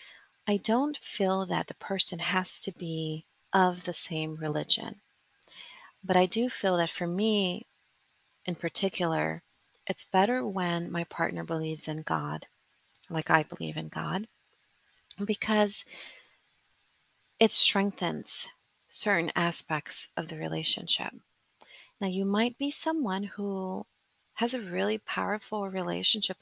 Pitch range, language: 170-205 Hz, English